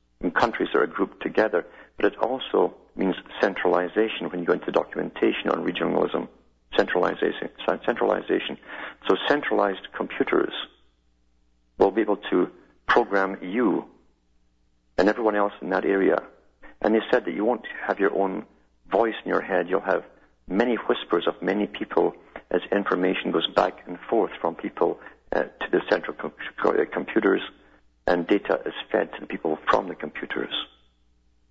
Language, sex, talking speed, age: English, male, 150 wpm, 50-69